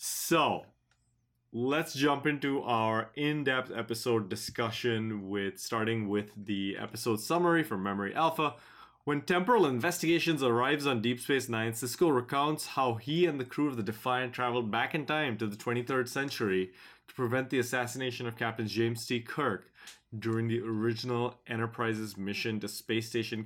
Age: 20-39